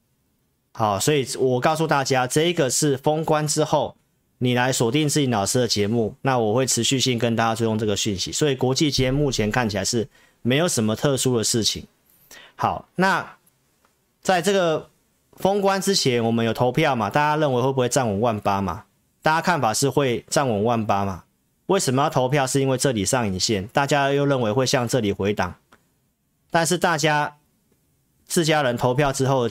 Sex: male